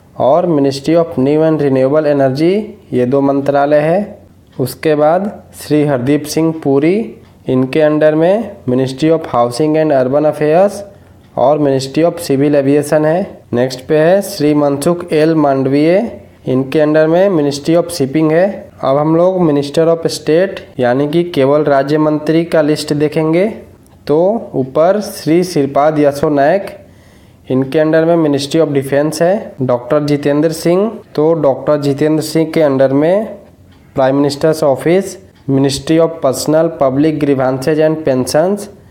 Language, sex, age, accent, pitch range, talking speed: English, male, 20-39, Indian, 140-165 Hz, 140 wpm